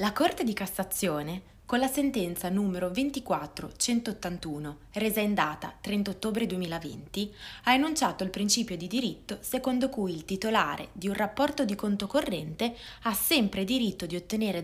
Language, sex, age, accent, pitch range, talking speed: Italian, female, 20-39, native, 180-240 Hz, 150 wpm